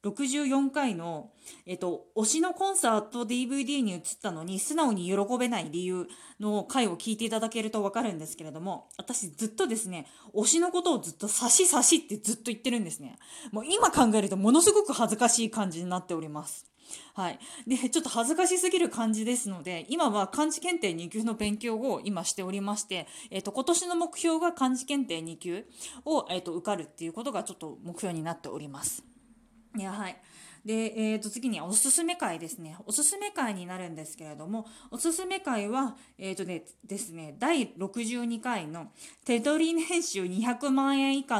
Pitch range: 185-275 Hz